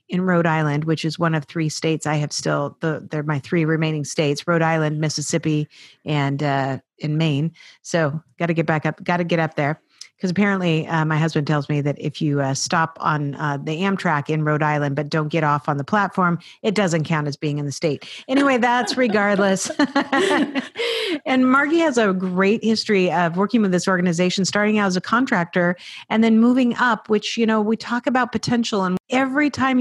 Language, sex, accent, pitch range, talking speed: English, female, American, 160-220 Hz, 205 wpm